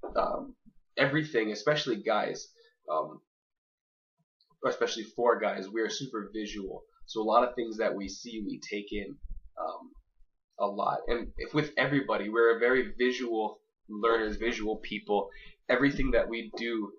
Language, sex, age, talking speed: English, male, 20-39, 140 wpm